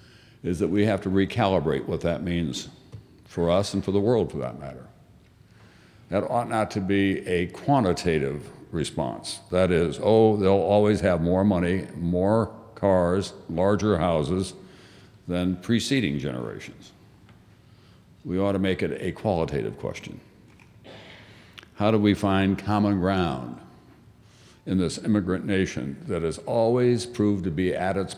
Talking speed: 145 wpm